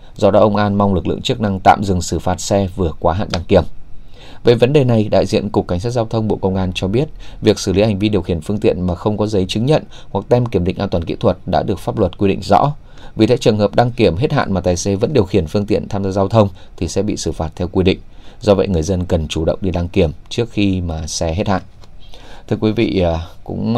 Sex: male